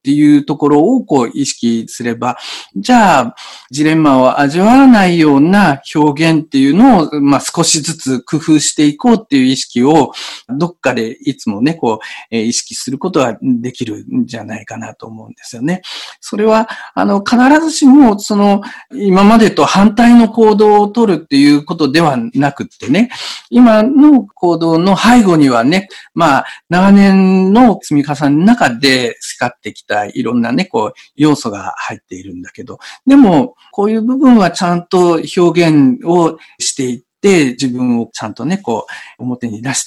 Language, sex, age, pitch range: Japanese, male, 50-69, 135-210 Hz